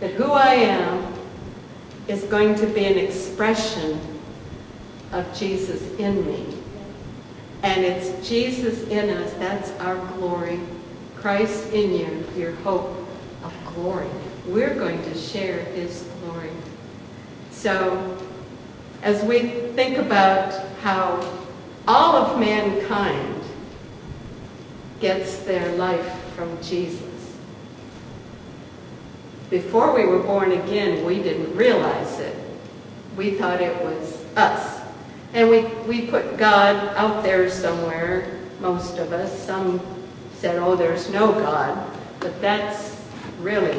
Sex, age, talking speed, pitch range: female, 60-79, 115 wpm, 180-210 Hz